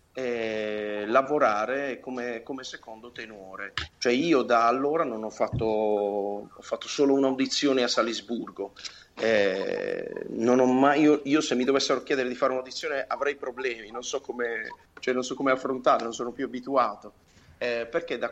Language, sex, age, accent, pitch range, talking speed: Italian, male, 40-59, native, 110-140 Hz, 160 wpm